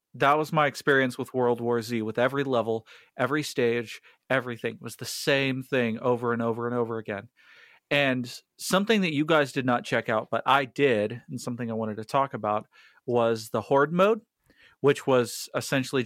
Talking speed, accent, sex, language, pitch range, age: 185 wpm, American, male, English, 120-140 Hz, 40-59